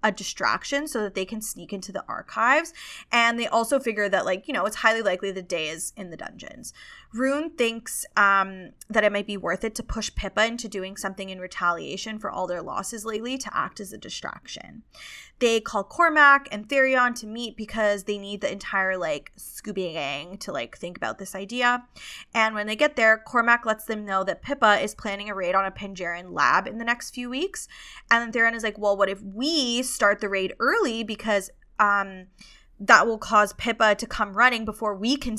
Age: 20-39